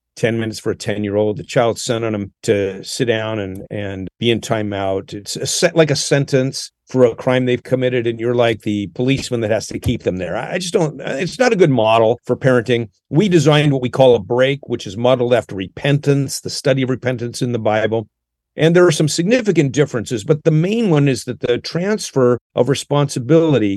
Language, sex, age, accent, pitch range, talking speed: English, male, 50-69, American, 115-155 Hz, 215 wpm